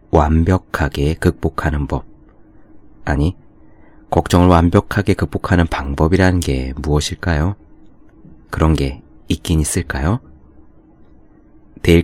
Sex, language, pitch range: male, Korean, 75-95 Hz